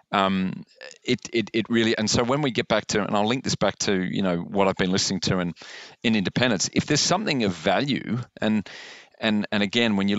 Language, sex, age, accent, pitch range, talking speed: English, male, 40-59, Australian, 95-105 Hz, 230 wpm